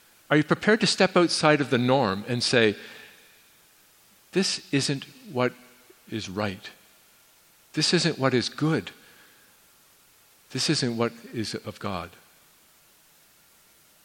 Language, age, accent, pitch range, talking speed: English, 50-69, American, 110-155 Hz, 115 wpm